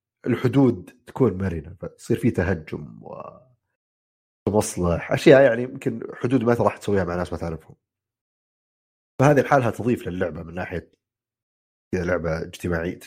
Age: 30-49